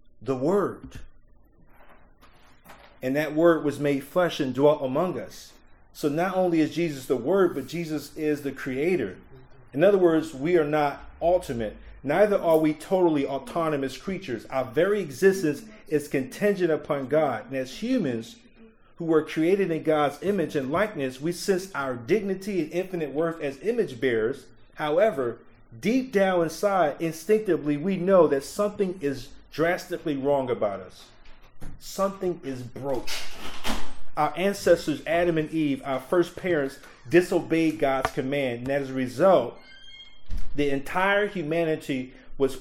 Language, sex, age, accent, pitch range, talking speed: English, male, 40-59, American, 135-175 Hz, 140 wpm